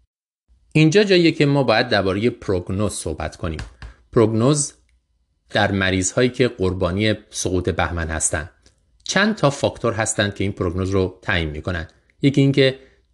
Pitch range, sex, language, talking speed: 80-115 Hz, male, Persian, 135 wpm